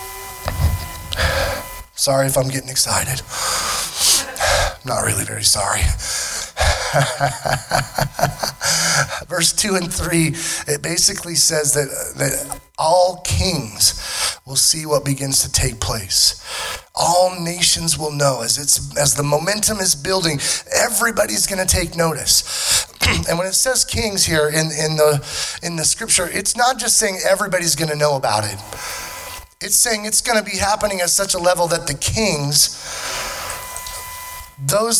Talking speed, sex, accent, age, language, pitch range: 135 wpm, male, American, 30-49, English, 120-185 Hz